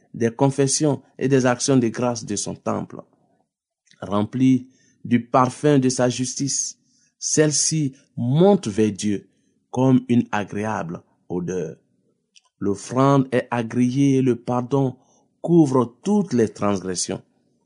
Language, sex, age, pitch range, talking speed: French, male, 50-69, 110-135 Hz, 115 wpm